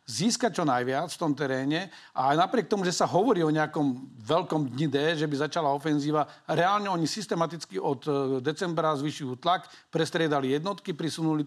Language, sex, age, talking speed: Slovak, male, 50-69, 170 wpm